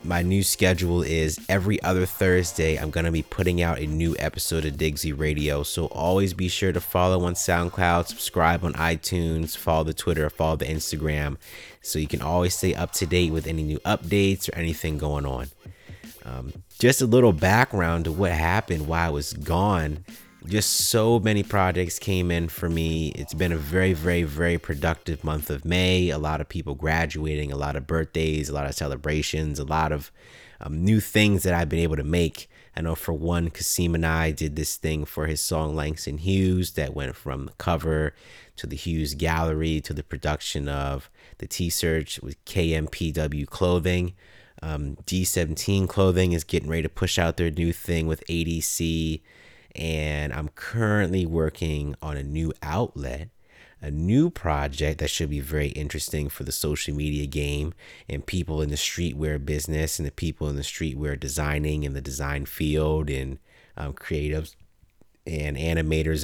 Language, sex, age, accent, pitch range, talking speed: English, male, 30-49, American, 75-90 Hz, 180 wpm